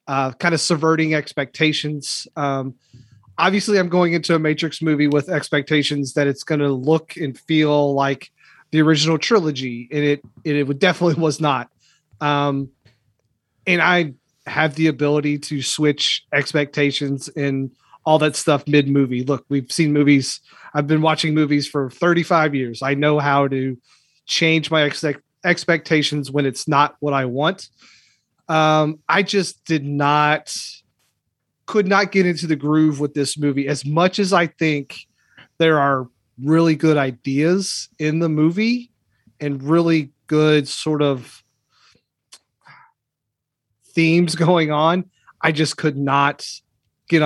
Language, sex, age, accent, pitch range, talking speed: English, male, 30-49, American, 140-160 Hz, 140 wpm